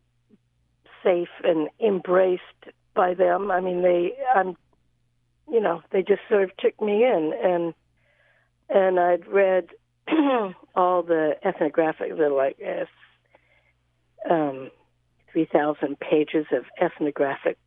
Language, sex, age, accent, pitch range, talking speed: English, female, 60-79, American, 130-180 Hz, 110 wpm